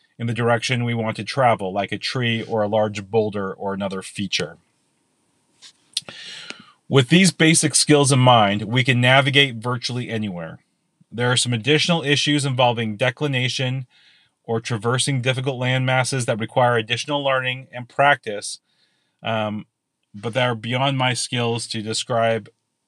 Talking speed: 140 wpm